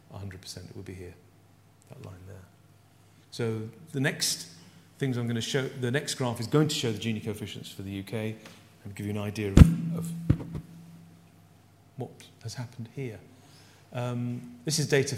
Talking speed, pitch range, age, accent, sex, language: 170 wpm, 110-140 Hz, 40-59, British, male, English